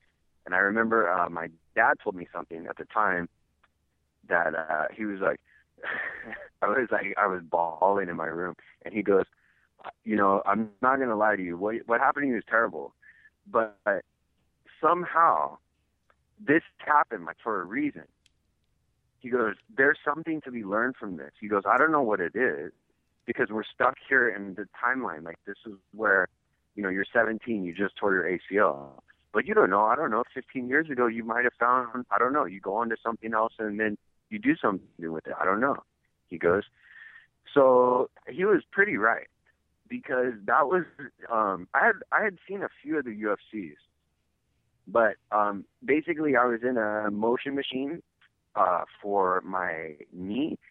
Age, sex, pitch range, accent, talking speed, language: 30-49, male, 90-125 Hz, American, 185 wpm, English